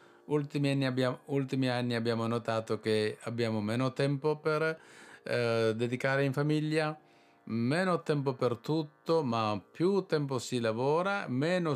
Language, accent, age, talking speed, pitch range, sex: Italian, native, 50-69, 115 wpm, 110-155 Hz, male